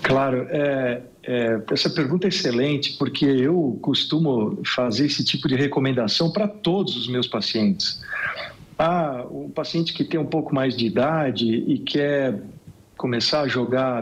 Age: 50-69